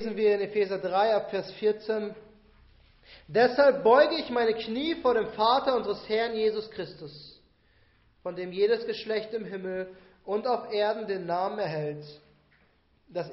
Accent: German